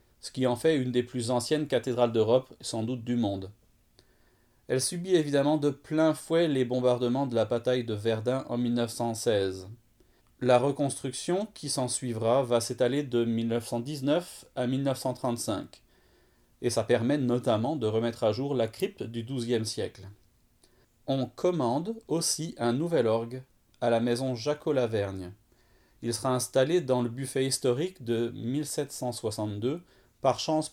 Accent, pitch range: French, 115-140 Hz